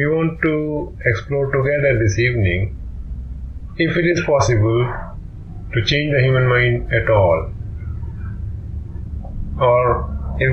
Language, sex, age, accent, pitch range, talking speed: English, male, 30-49, Indian, 90-135 Hz, 115 wpm